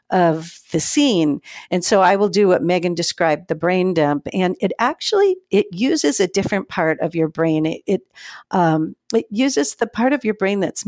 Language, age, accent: English, 50-69, American